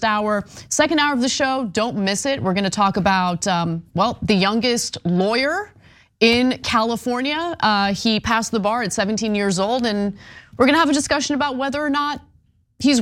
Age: 30-49